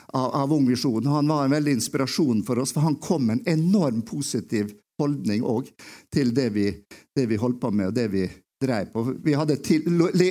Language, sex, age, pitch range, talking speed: English, male, 50-69, 120-150 Hz, 175 wpm